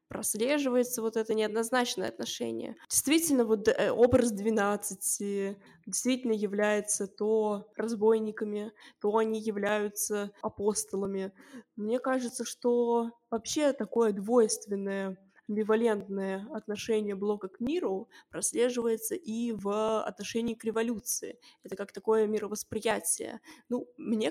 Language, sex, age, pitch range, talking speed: Russian, female, 20-39, 205-230 Hz, 100 wpm